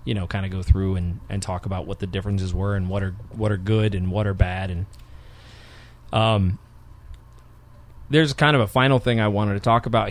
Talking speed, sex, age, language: 220 wpm, male, 20-39, English